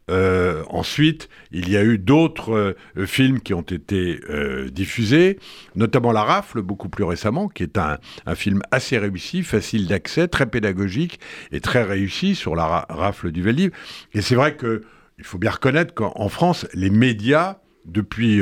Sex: male